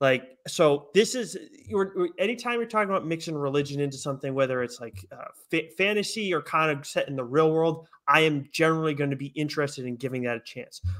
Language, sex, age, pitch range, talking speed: English, male, 20-39, 140-170 Hz, 200 wpm